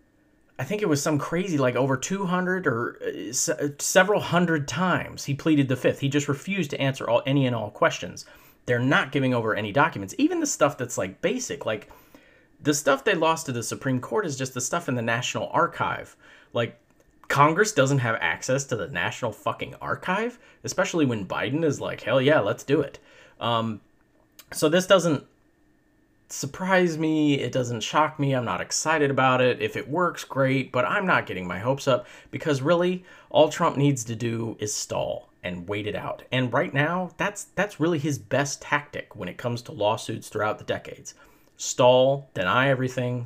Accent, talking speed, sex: American, 190 wpm, male